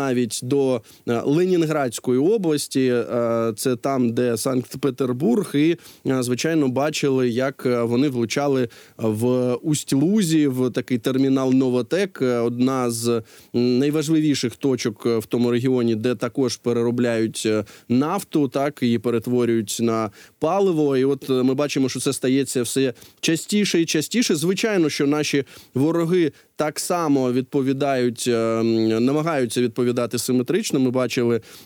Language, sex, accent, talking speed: Ukrainian, male, native, 115 wpm